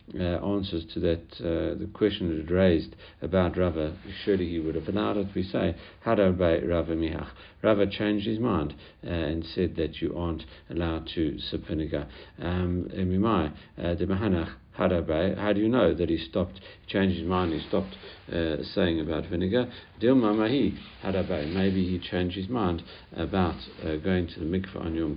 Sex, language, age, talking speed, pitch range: male, English, 60-79, 165 wpm, 85-100 Hz